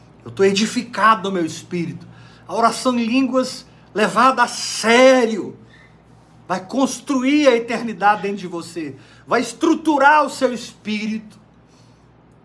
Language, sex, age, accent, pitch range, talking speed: Portuguese, male, 50-69, Brazilian, 120-180 Hz, 120 wpm